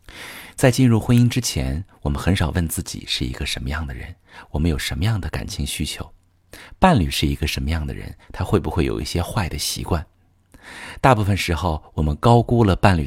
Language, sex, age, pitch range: Chinese, male, 50-69, 80-115 Hz